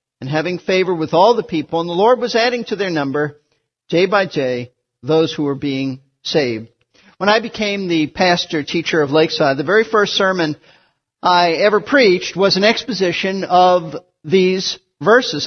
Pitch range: 165-230 Hz